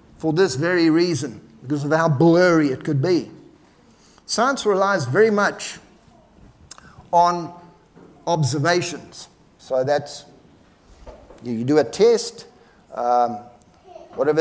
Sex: male